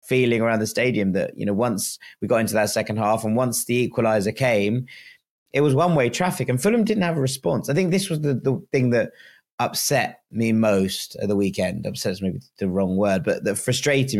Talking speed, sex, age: 220 wpm, male, 30-49